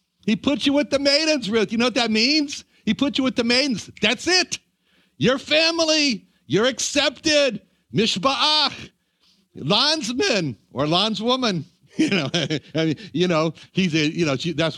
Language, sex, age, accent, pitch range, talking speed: English, male, 60-79, American, 145-235 Hz, 160 wpm